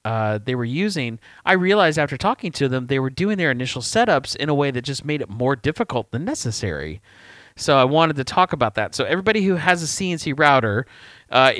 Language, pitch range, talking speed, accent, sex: English, 110-145 Hz, 215 wpm, American, male